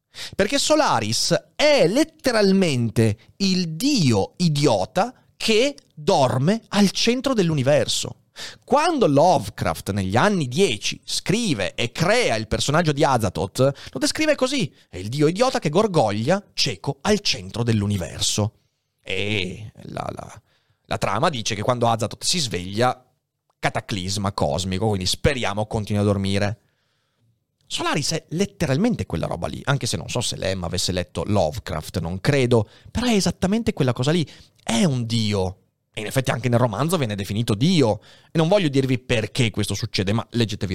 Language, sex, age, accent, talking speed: Italian, male, 30-49, native, 145 wpm